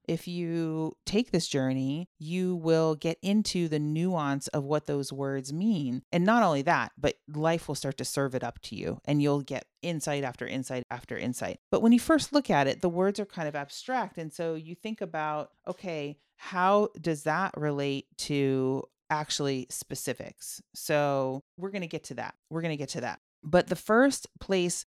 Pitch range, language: 140-185 Hz, English